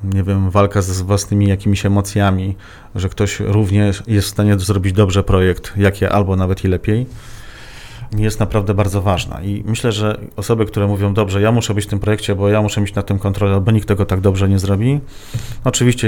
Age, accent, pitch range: 40-59, native, 100-110 Hz